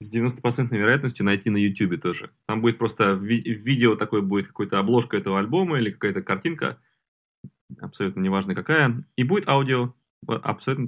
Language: Russian